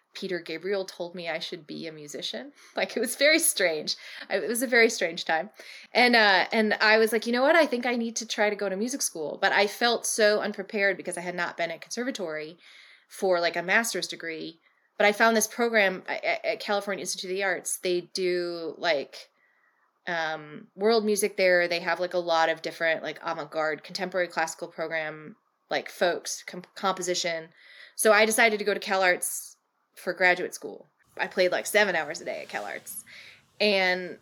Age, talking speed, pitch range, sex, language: 20-39, 200 wpm, 175-220 Hz, female, English